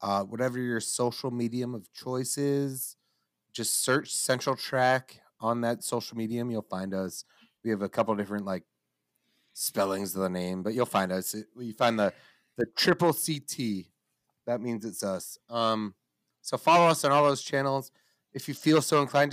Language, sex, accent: English, male, American